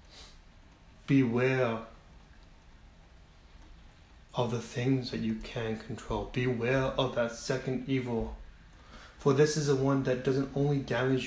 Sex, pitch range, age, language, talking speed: male, 85-135 Hz, 20-39, English, 115 wpm